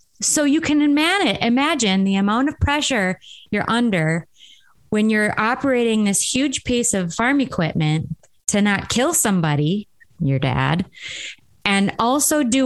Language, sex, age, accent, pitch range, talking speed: English, female, 30-49, American, 170-220 Hz, 135 wpm